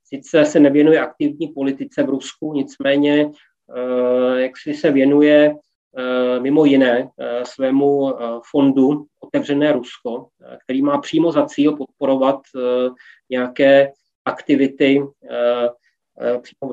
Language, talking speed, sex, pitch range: Czech, 125 wpm, male, 130-150 Hz